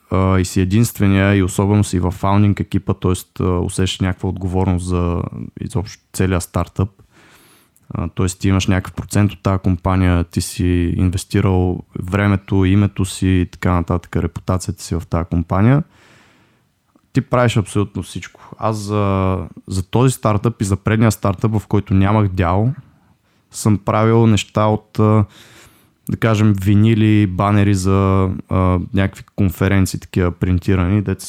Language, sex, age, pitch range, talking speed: Bulgarian, male, 20-39, 95-105 Hz, 135 wpm